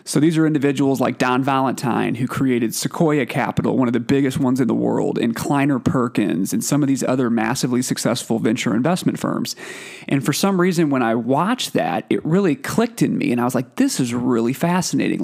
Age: 30-49